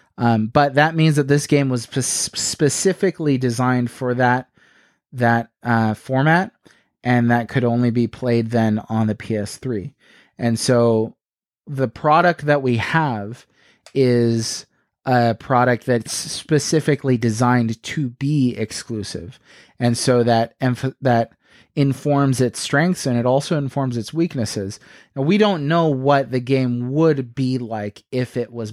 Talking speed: 145 wpm